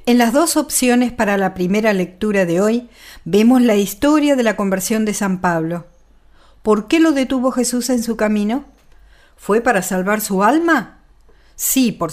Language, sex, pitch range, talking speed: Spanish, female, 185-240 Hz, 170 wpm